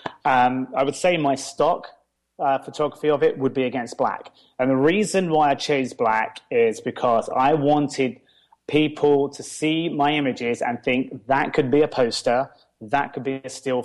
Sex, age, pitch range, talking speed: male, 30-49, 125-150 Hz, 180 wpm